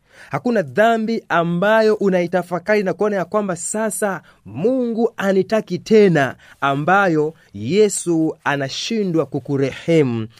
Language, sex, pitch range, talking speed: Swahili, male, 115-170 Hz, 90 wpm